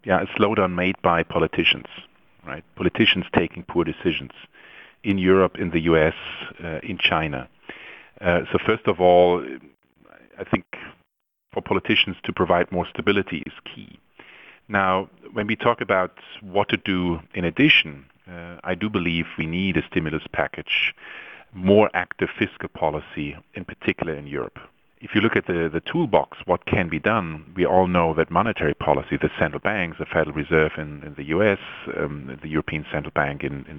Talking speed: 170 wpm